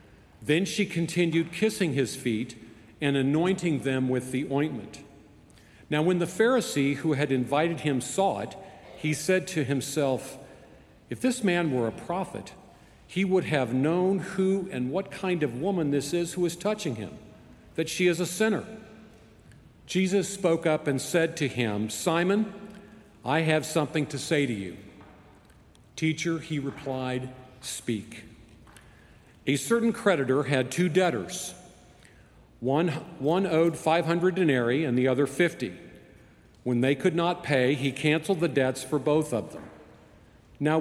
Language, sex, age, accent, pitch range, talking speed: English, male, 50-69, American, 130-175 Hz, 150 wpm